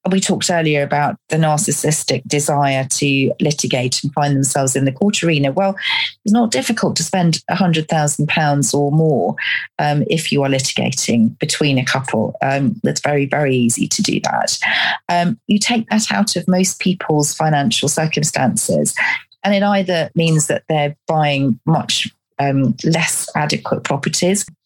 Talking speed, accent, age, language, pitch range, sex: 155 wpm, British, 40-59, English, 140-185 Hz, female